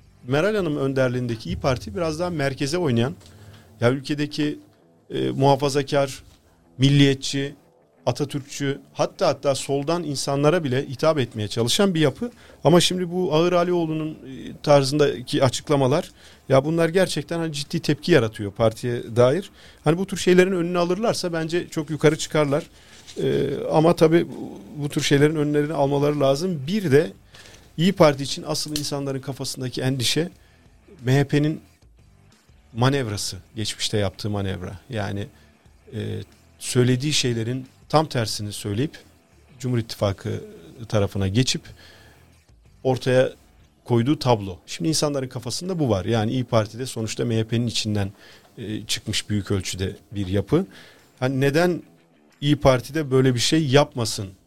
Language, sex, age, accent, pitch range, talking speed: Turkish, male, 40-59, native, 110-150 Hz, 125 wpm